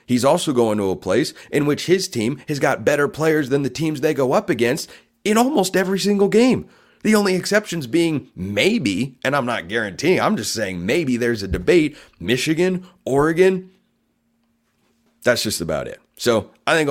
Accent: American